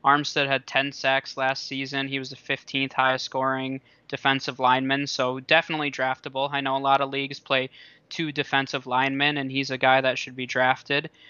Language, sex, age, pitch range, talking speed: English, male, 20-39, 130-145 Hz, 185 wpm